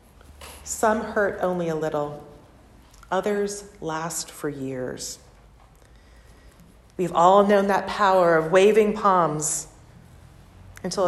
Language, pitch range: English, 150-200 Hz